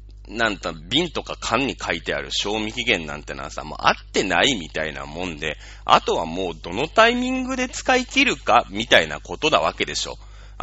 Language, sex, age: Japanese, male, 30-49